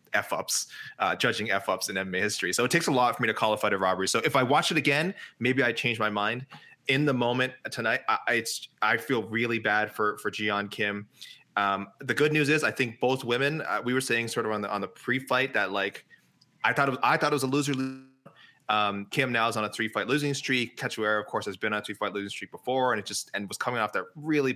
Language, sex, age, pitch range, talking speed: English, male, 20-39, 105-130 Hz, 260 wpm